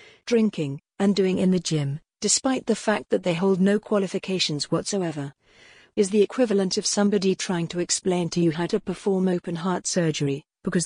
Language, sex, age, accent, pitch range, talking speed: English, female, 50-69, British, 170-205 Hz, 175 wpm